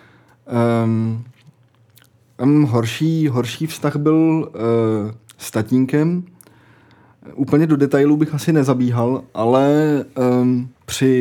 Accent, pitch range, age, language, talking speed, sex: native, 125-165 Hz, 20-39, Czech, 75 wpm, male